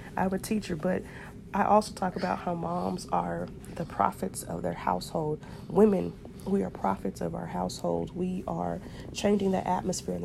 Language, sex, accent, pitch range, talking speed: English, female, American, 175-210 Hz, 175 wpm